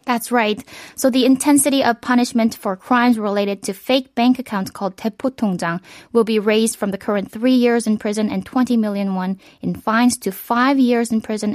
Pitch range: 200-245 Hz